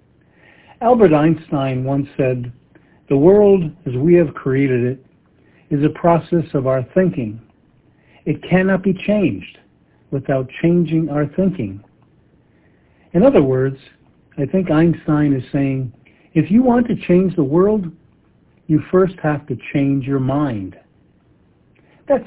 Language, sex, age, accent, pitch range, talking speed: English, male, 60-79, American, 135-170 Hz, 130 wpm